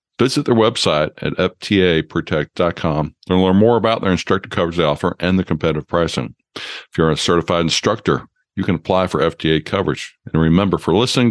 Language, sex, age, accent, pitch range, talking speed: English, male, 50-69, American, 80-100 Hz, 175 wpm